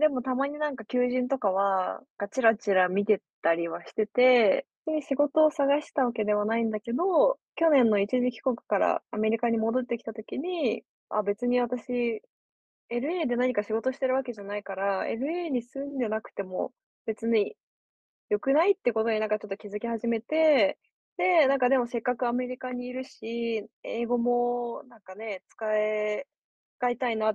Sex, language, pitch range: female, Japanese, 205-255 Hz